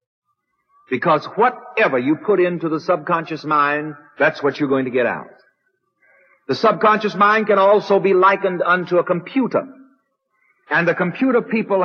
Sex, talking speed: male, 145 wpm